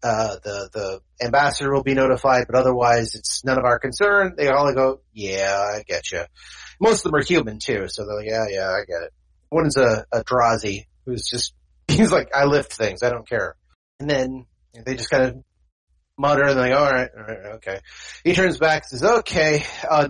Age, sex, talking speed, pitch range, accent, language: 30-49, male, 210 wpm, 115-155 Hz, American, English